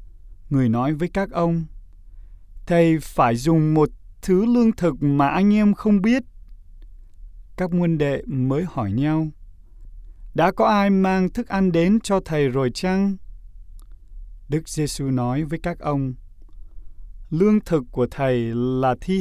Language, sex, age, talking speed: Vietnamese, male, 20-39, 145 wpm